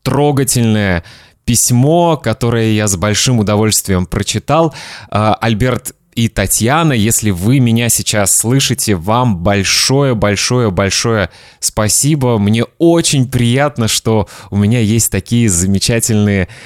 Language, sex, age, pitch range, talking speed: Russian, male, 20-39, 105-130 Hz, 100 wpm